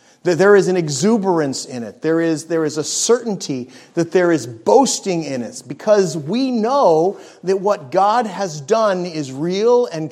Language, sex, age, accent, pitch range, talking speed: English, male, 40-59, American, 145-215 Hz, 180 wpm